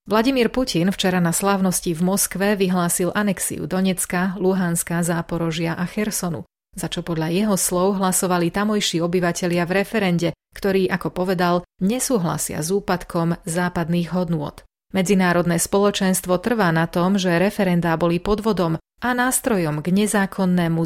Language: Slovak